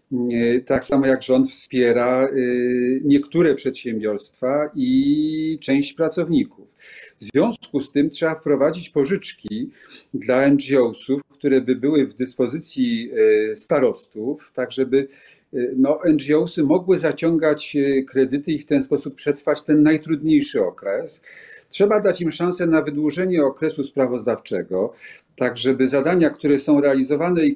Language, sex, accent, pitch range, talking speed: Polish, male, native, 130-180 Hz, 120 wpm